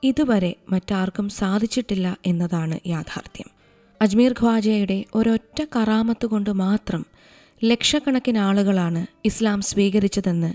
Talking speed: 85 wpm